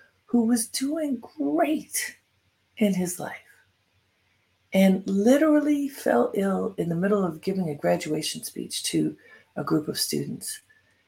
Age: 50-69